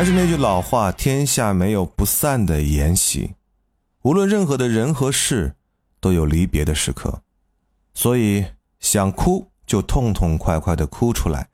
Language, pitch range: Chinese, 80-115 Hz